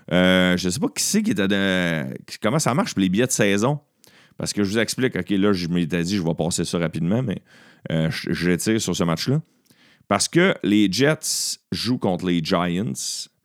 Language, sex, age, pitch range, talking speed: French, male, 40-59, 90-130 Hz, 225 wpm